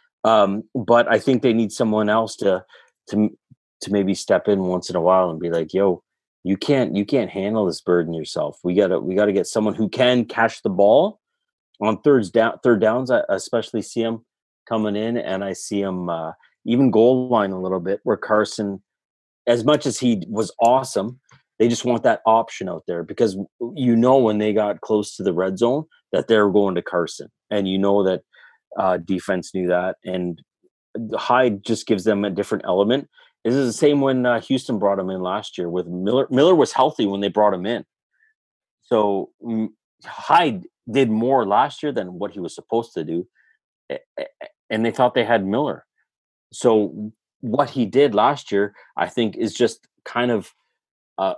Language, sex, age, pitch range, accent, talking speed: English, male, 30-49, 95-120 Hz, American, 190 wpm